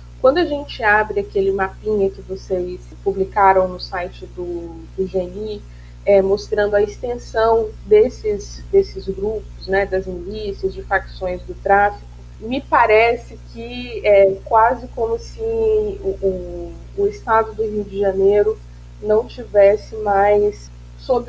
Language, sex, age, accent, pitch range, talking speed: Portuguese, female, 20-39, Brazilian, 180-225 Hz, 125 wpm